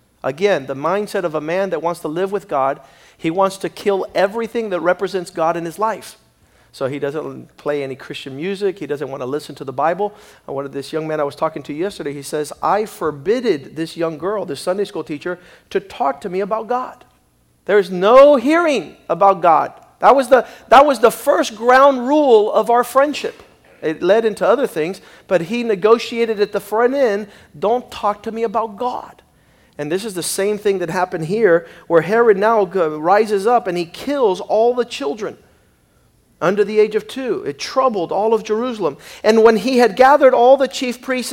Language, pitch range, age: English, 180-235 Hz, 50-69